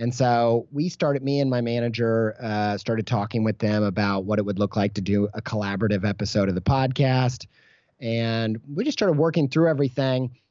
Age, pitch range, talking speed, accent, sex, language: 30-49, 110-145 Hz, 195 wpm, American, male, English